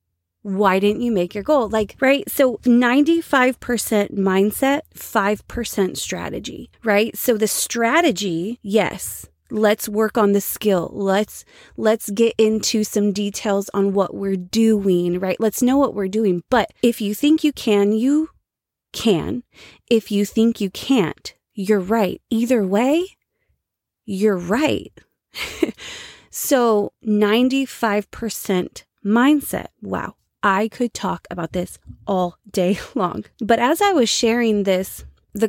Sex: female